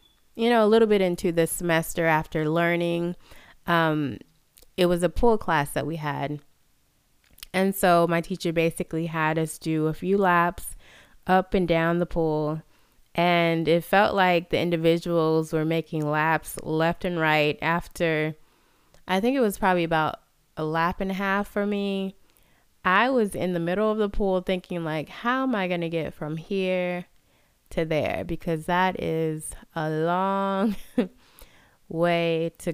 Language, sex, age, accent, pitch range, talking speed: English, female, 20-39, American, 155-190 Hz, 160 wpm